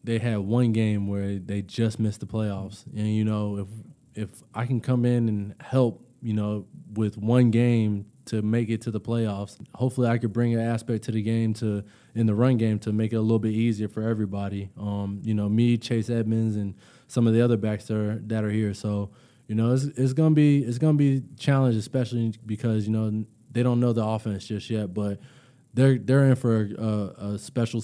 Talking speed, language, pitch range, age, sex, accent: 220 wpm, English, 105-120 Hz, 20-39, male, American